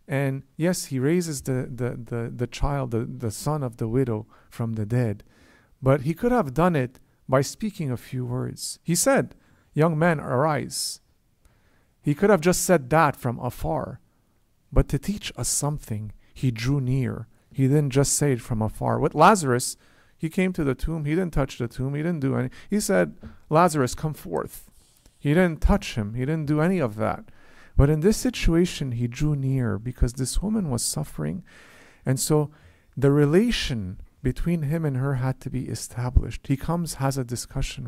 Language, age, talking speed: English, 50-69, 185 wpm